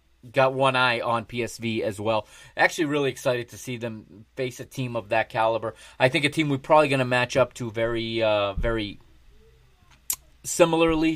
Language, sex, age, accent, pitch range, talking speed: English, male, 30-49, American, 110-150 Hz, 185 wpm